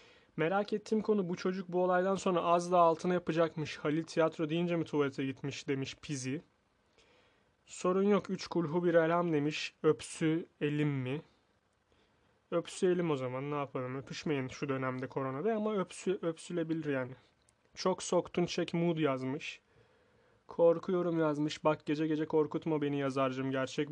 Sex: male